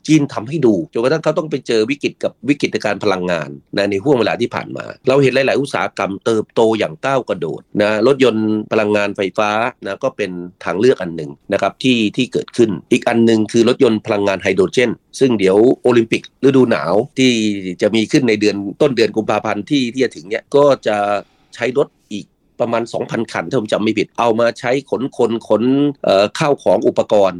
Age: 30-49